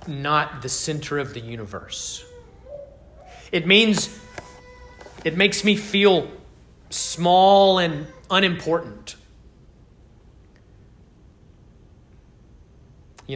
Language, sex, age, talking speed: English, male, 30-49, 70 wpm